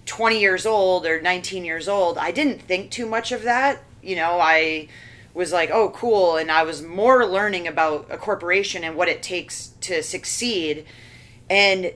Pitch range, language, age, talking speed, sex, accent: 155-190 Hz, English, 30-49, 180 wpm, female, American